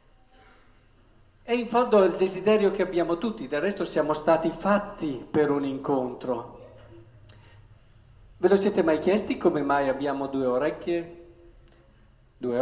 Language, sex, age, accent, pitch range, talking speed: Italian, male, 50-69, native, 145-220 Hz, 130 wpm